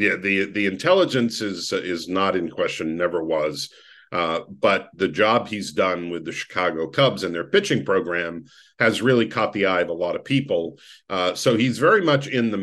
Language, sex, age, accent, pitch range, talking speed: English, male, 50-69, American, 95-115 Hz, 200 wpm